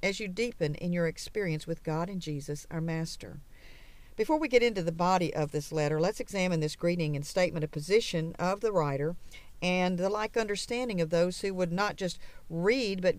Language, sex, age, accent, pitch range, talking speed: English, female, 50-69, American, 160-205 Hz, 200 wpm